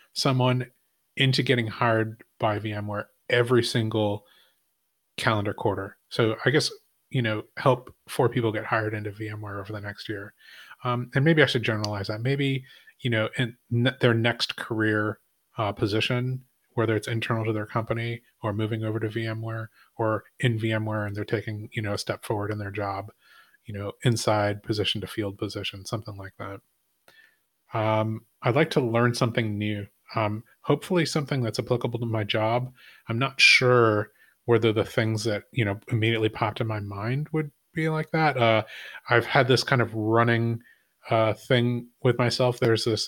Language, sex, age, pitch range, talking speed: English, male, 30-49, 110-125 Hz, 175 wpm